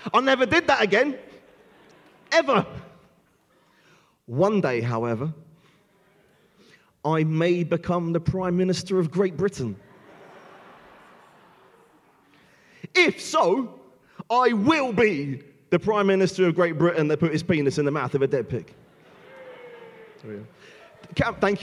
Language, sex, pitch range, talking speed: English, male, 140-200 Hz, 115 wpm